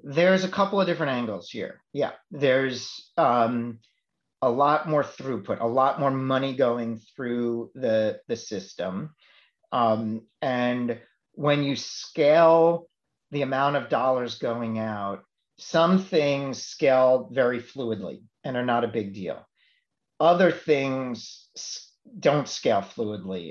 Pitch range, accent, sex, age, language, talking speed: 115-145 Hz, American, male, 40-59, English, 130 wpm